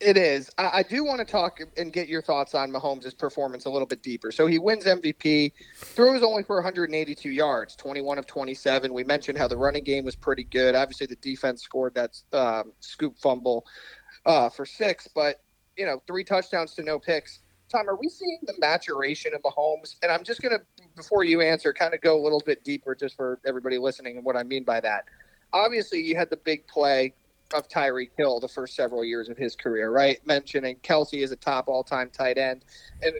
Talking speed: 210 wpm